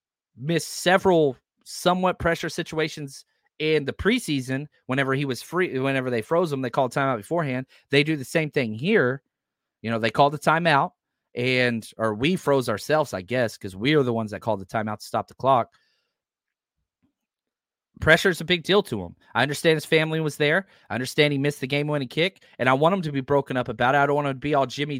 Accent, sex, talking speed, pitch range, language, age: American, male, 215 wpm, 130-180 Hz, English, 30-49